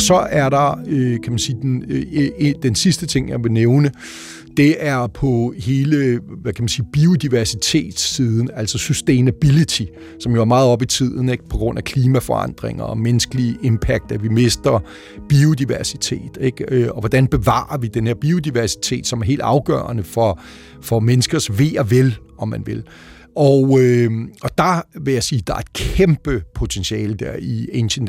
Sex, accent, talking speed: male, native, 175 wpm